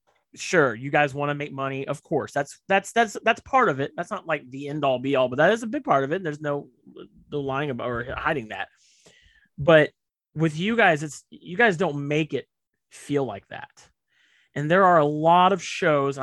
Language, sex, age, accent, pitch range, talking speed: English, male, 30-49, American, 125-150 Hz, 220 wpm